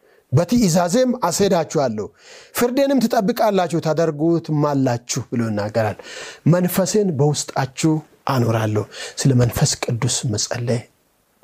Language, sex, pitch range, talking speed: Amharic, male, 150-225 Hz, 85 wpm